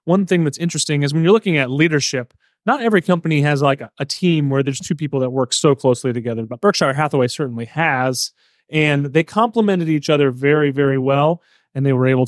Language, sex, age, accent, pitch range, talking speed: English, male, 30-49, American, 130-165 Hz, 215 wpm